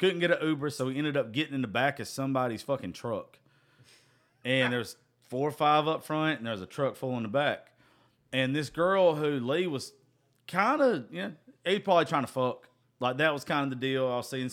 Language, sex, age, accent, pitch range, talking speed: English, male, 40-59, American, 120-155 Hz, 235 wpm